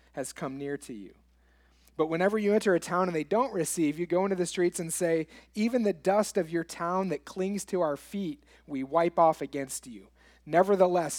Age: 30-49